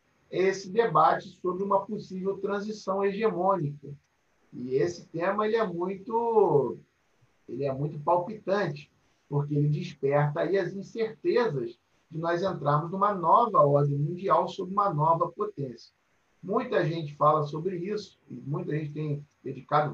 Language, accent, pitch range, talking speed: Portuguese, Brazilian, 145-195 Hz, 130 wpm